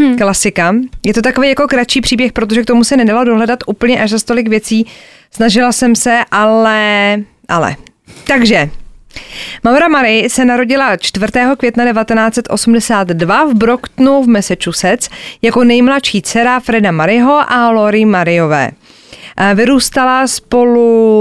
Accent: native